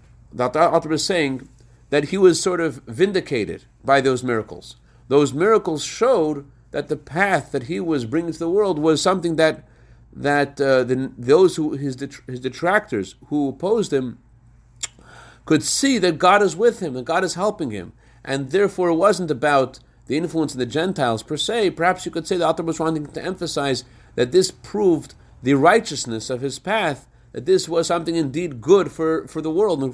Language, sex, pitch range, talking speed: English, male, 125-165 Hz, 190 wpm